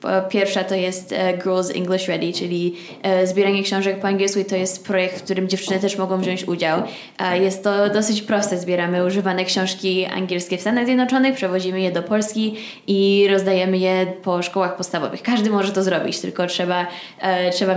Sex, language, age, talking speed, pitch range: female, Polish, 10-29, 170 wpm, 185-215 Hz